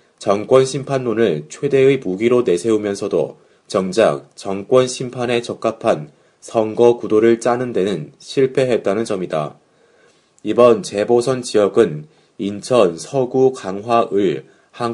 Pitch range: 100-120 Hz